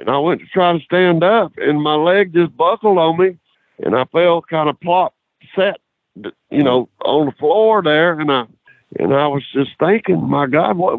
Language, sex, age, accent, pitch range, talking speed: English, male, 60-79, American, 140-195 Hz, 210 wpm